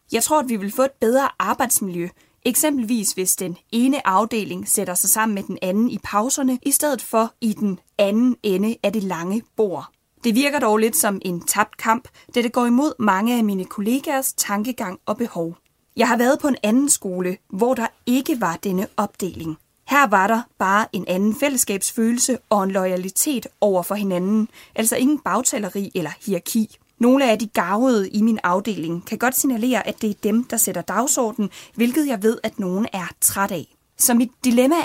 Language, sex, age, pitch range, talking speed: Danish, female, 20-39, 195-245 Hz, 190 wpm